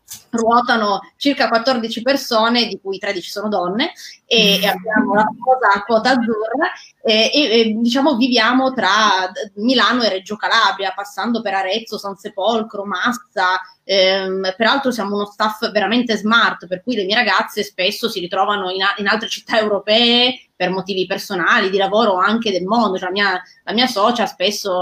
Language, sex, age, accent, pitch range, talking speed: Italian, female, 20-39, native, 195-235 Hz, 165 wpm